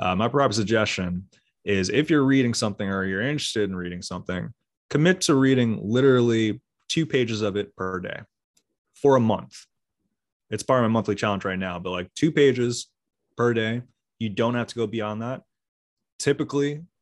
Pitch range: 100-120 Hz